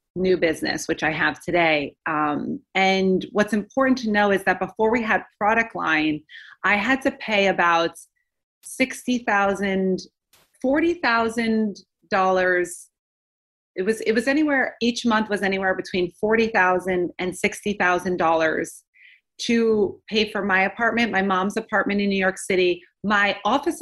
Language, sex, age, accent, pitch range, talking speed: English, female, 30-49, American, 180-220 Hz, 135 wpm